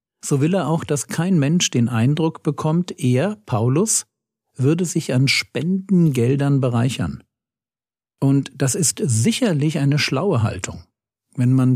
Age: 50-69